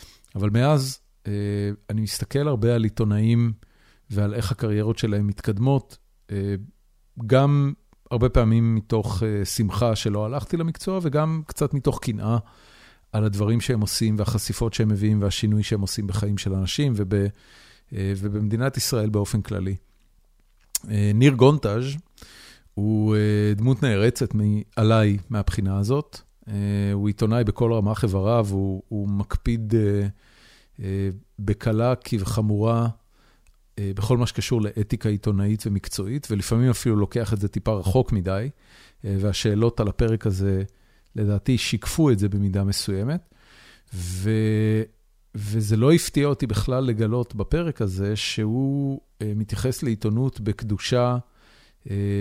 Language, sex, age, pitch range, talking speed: Hebrew, male, 40-59, 105-120 Hz, 115 wpm